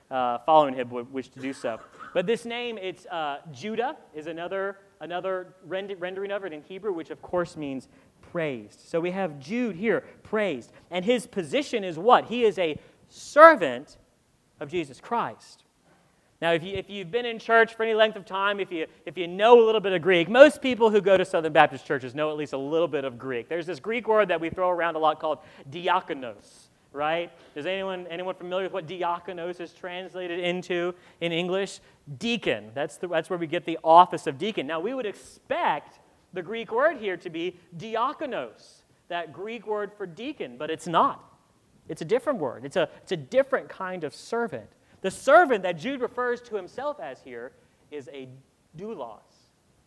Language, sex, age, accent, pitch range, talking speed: English, male, 40-59, American, 160-215 Hz, 195 wpm